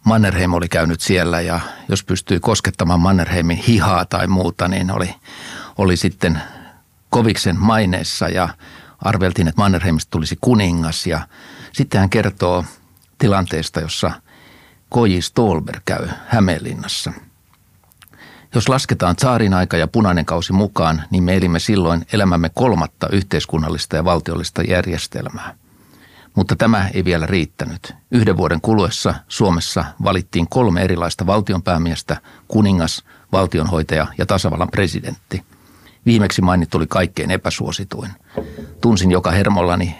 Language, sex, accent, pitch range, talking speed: Finnish, male, native, 85-100 Hz, 115 wpm